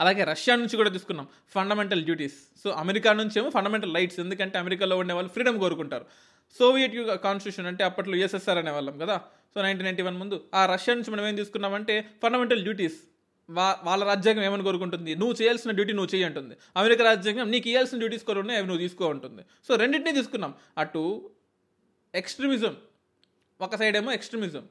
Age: 20-39